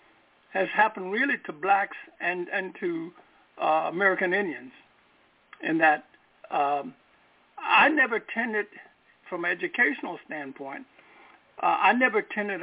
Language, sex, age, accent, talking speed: English, male, 60-79, American, 120 wpm